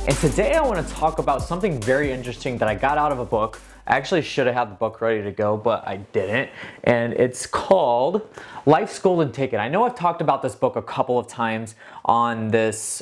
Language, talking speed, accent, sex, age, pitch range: English, 225 wpm, American, male, 20-39, 115-150 Hz